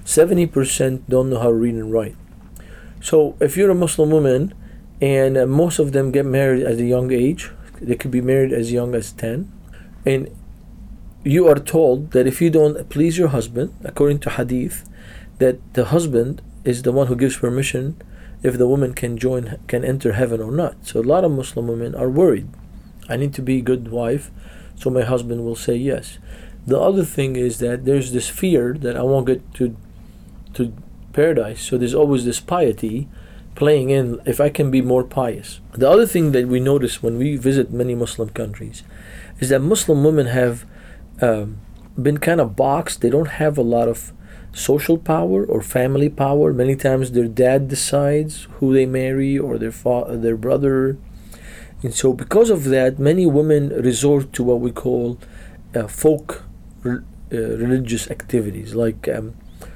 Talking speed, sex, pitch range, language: 180 wpm, male, 115-140 Hz, English